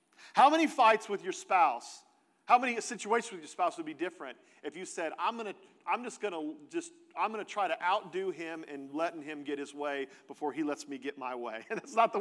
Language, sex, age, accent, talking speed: English, male, 40-59, American, 220 wpm